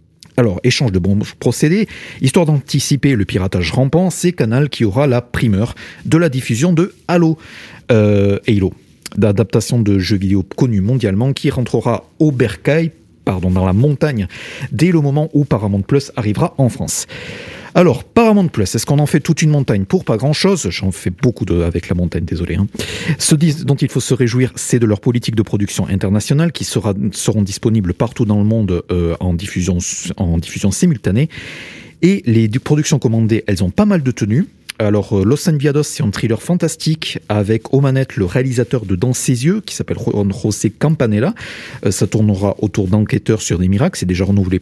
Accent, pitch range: French, 100-150 Hz